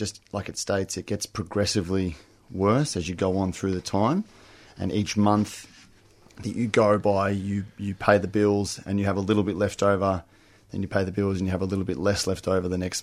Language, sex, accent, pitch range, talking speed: English, male, Australian, 95-105 Hz, 235 wpm